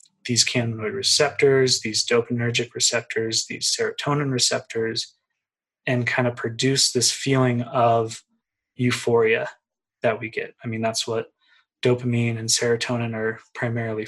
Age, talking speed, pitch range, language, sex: 20-39, 125 wpm, 115-130 Hz, English, male